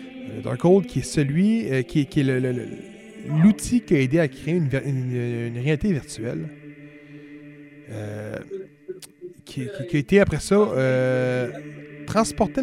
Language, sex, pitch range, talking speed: French, male, 135-190 Hz, 155 wpm